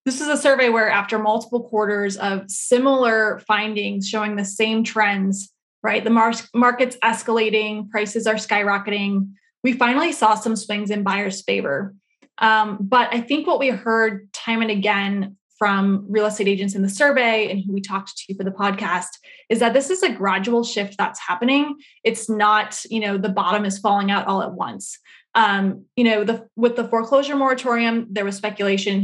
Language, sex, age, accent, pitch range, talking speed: English, female, 20-39, American, 200-230 Hz, 180 wpm